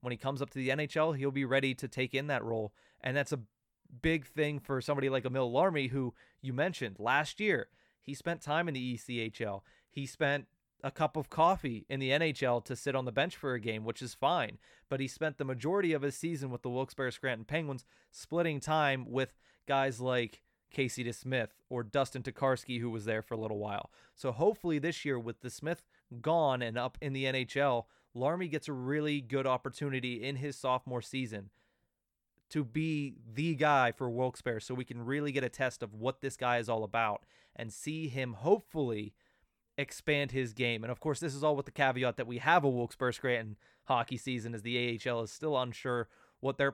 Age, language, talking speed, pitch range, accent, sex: 30-49, English, 205 wpm, 125-145 Hz, American, male